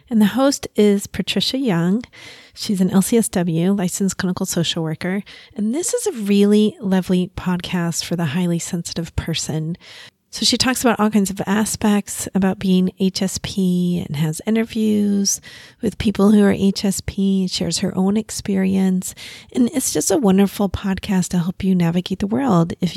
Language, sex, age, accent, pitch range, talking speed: English, female, 30-49, American, 175-210 Hz, 160 wpm